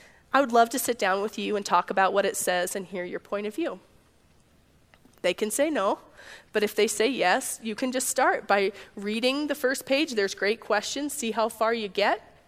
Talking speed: 220 wpm